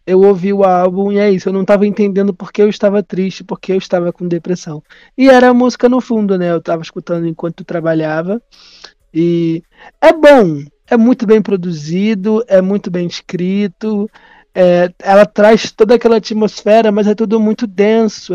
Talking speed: 175 wpm